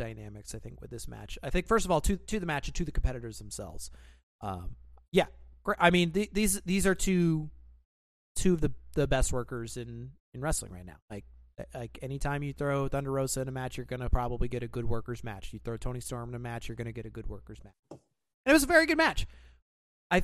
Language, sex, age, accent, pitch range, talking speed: English, male, 30-49, American, 95-155 Hz, 235 wpm